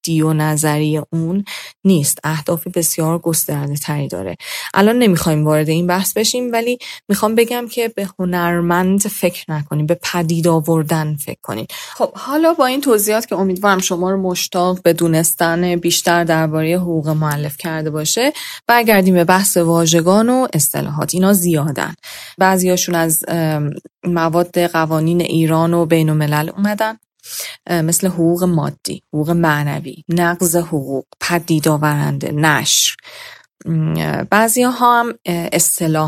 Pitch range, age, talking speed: 155-185 Hz, 30-49, 125 wpm